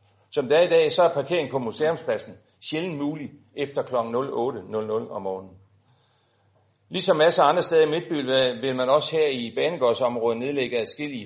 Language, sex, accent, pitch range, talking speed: Danish, male, native, 110-170 Hz, 165 wpm